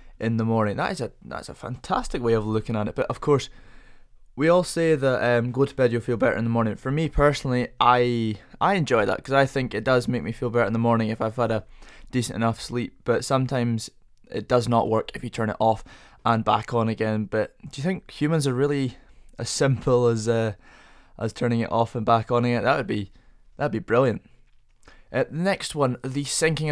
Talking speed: 230 wpm